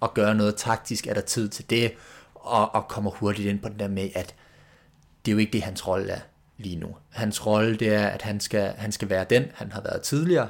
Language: Danish